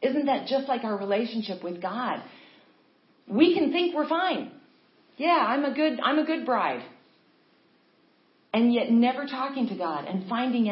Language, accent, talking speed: English, American, 160 wpm